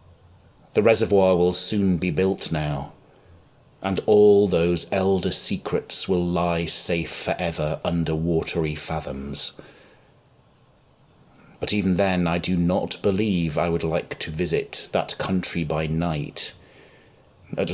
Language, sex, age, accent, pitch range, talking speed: English, male, 30-49, British, 80-100 Hz, 120 wpm